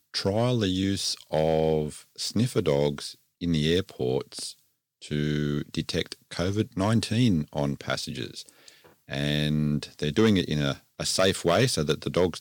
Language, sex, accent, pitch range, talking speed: English, male, Australian, 75-85 Hz, 130 wpm